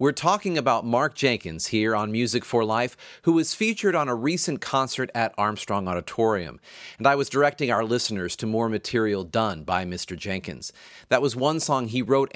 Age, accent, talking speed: 40-59, American, 190 wpm